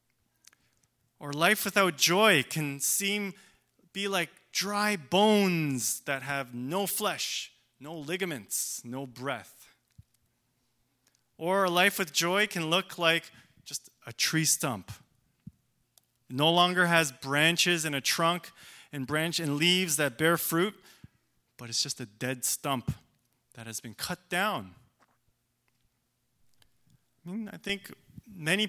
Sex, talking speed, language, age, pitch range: male, 125 wpm, English, 30-49, 125-180 Hz